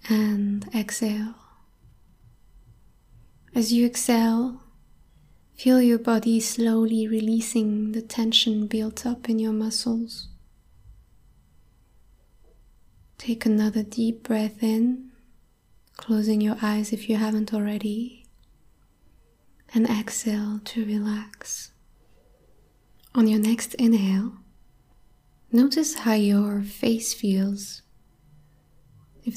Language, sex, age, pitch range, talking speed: English, female, 20-39, 205-230 Hz, 90 wpm